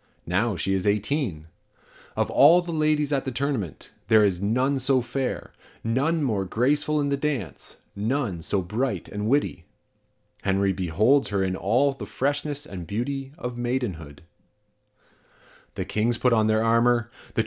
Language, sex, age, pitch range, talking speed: English, male, 30-49, 100-130 Hz, 155 wpm